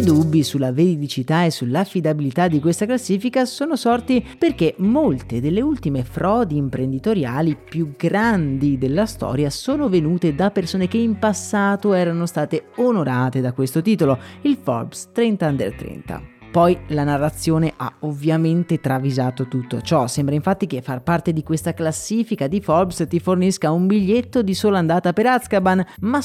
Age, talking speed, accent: 30-49, 155 wpm, native